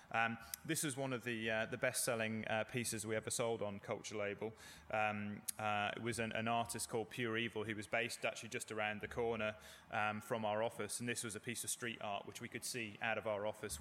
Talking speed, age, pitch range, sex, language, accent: 240 wpm, 20-39, 105-120 Hz, male, English, British